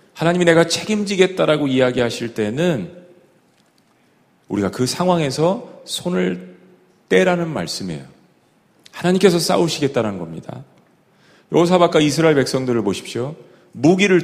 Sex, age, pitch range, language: male, 40-59, 130-175 Hz, Korean